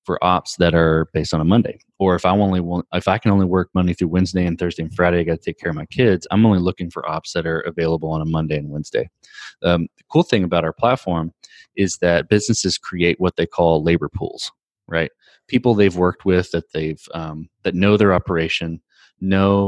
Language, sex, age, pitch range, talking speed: English, male, 20-39, 80-95 Hz, 230 wpm